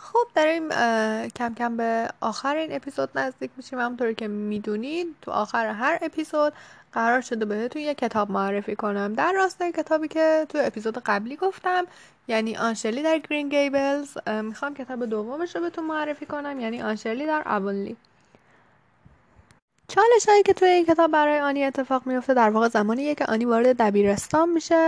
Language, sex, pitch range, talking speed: Persian, female, 220-310 Hz, 155 wpm